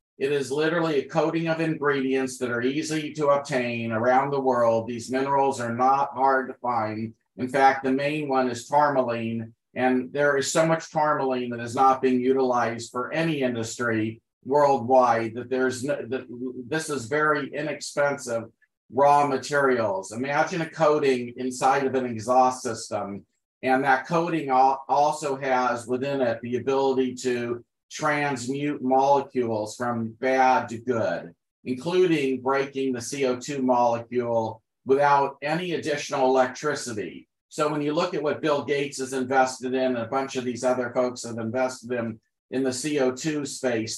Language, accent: English, American